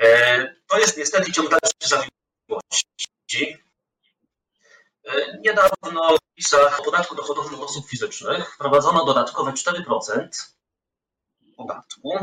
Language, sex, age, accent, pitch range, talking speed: Polish, male, 30-49, native, 120-175 Hz, 85 wpm